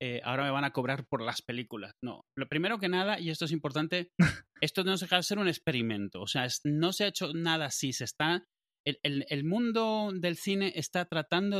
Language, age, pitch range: Spanish, 30-49, 130-175 Hz